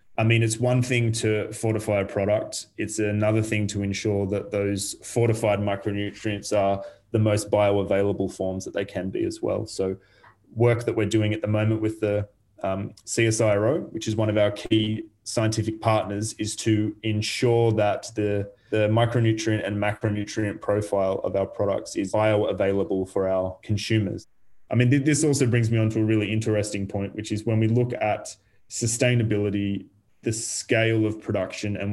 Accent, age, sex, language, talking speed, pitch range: Australian, 20-39, male, English, 170 wpm, 105-115 Hz